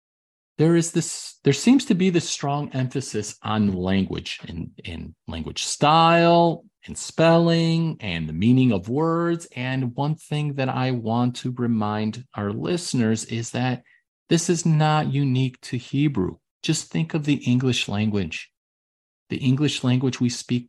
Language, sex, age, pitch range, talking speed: English, male, 40-59, 105-145 Hz, 150 wpm